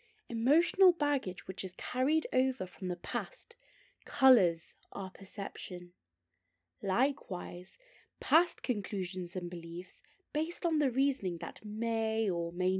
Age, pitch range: 20-39, 195-285 Hz